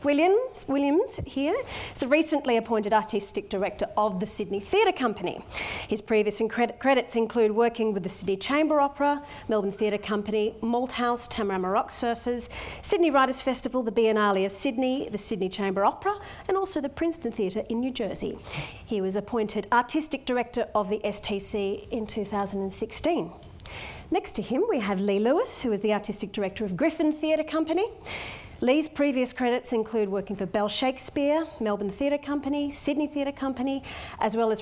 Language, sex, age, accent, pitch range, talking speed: English, female, 40-59, Australian, 210-285 Hz, 160 wpm